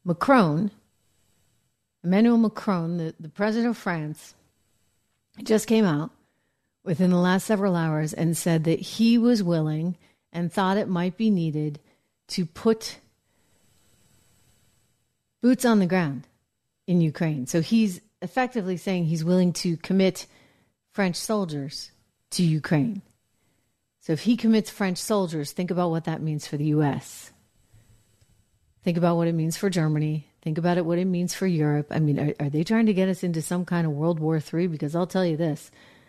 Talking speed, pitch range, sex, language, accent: 165 wpm, 150-195 Hz, female, English, American